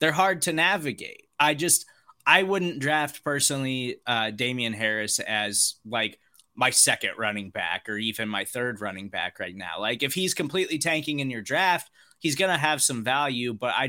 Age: 20-39